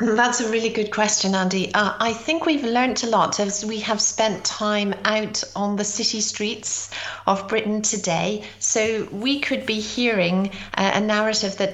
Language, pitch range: English, 185-215 Hz